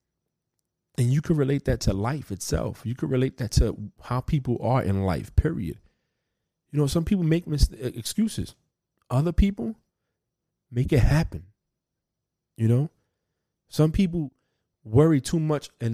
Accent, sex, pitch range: American, male, 105-150 Hz